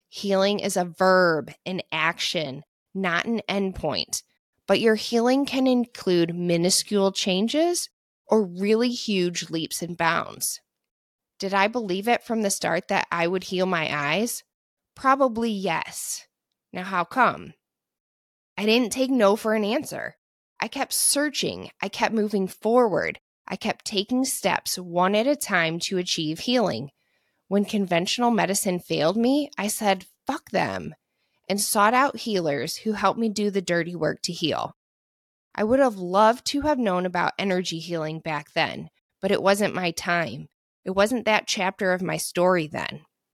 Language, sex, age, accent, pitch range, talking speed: English, female, 20-39, American, 175-220 Hz, 155 wpm